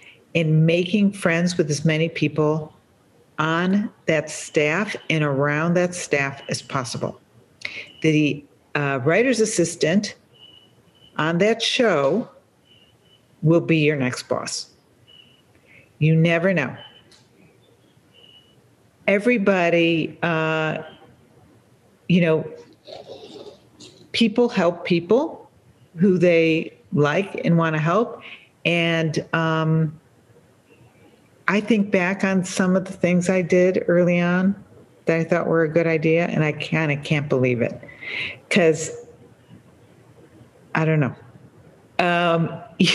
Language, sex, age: English, female, 50-69